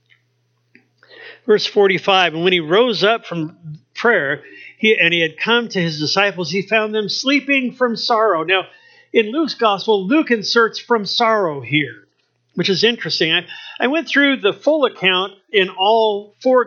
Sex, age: male, 50-69